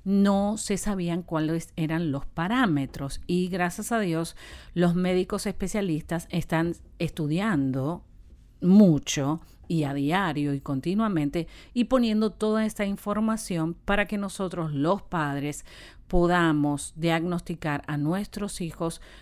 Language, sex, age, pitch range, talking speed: Spanish, female, 50-69, 145-190 Hz, 115 wpm